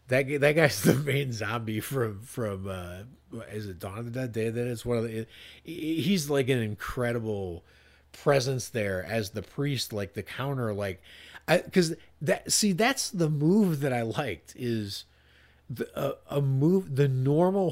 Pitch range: 105-145 Hz